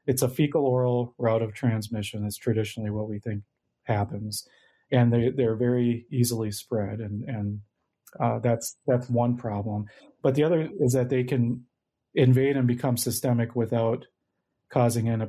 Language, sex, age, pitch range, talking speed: English, male, 40-59, 110-125 Hz, 150 wpm